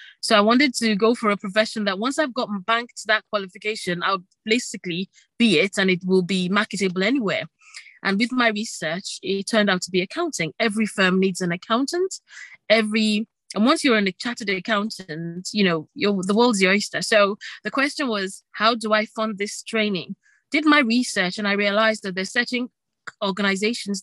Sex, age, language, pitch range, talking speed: female, 20-39, English, 195-240 Hz, 185 wpm